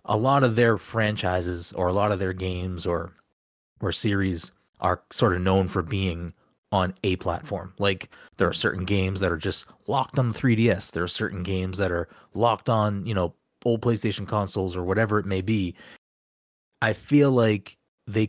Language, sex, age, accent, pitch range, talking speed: English, male, 20-39, American, 90-115 Hz, 185 wpm